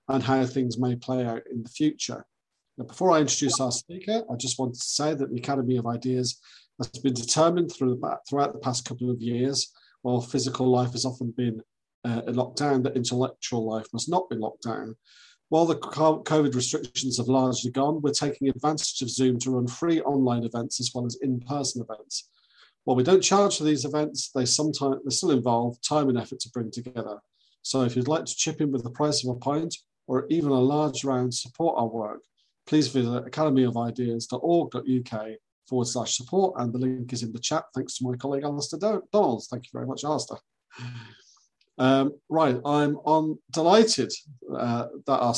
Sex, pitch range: male, 125-145 Hz